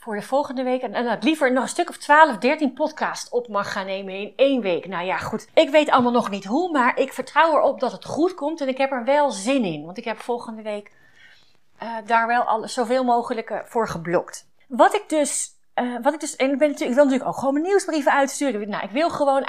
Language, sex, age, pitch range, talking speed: Dutch, female, 30-49, 210-280 Hz, 250 wpm